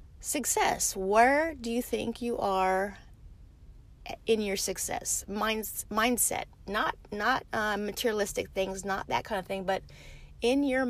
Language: English